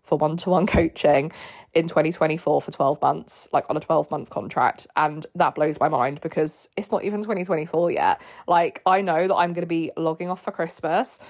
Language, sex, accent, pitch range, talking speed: English, female, British, 155-180 Hz, 195 wpm